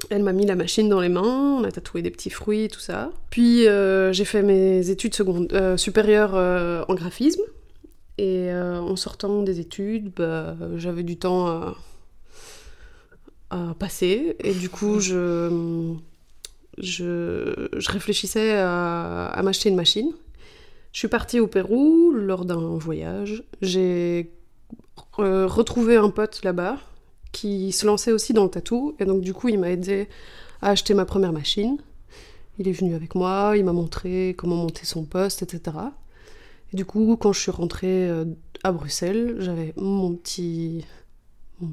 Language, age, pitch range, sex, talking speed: French, 20-39, 175-210 Hz, female, 165 wpm